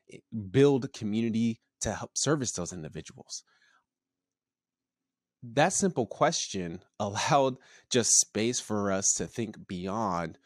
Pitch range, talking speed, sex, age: 90-120 Hz, 110 wpm, male, 30-49